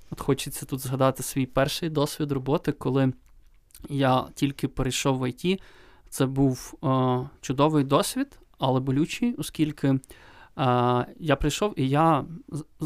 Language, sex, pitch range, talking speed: Ukrainian, male, 130-155 Hz, 130 wpm